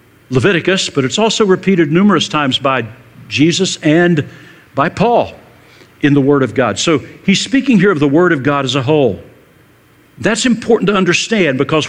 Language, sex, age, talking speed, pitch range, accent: English, male, 60-79, 170 wpm, 130-175 Hz, American